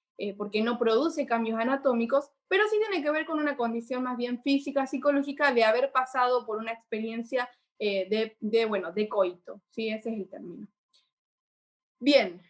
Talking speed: 175 wpm